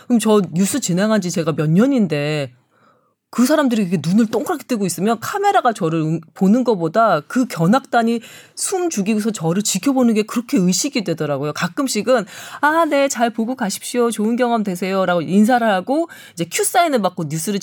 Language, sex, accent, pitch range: Korean, female, native, 185-275 Hz